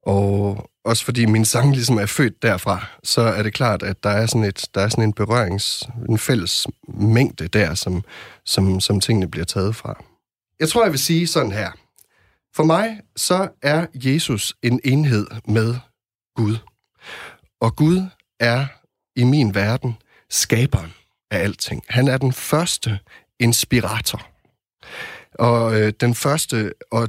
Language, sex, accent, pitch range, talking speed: Danish, male, native, 105-140 Hz, 150 wpm